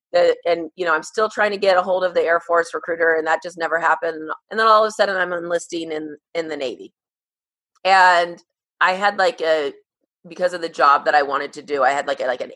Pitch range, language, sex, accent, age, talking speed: 155-190 Hz, English, female, American, 30-49, 250 wpm